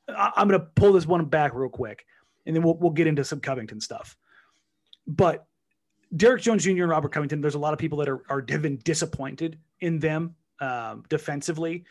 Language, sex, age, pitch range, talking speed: English, male, 30-49, 130-170 Hz, 195 wpm